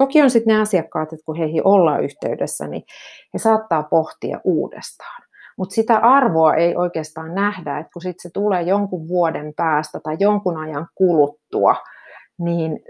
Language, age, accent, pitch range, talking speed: Finnish, 30-49, native, 160-215 Hz, 160 wpm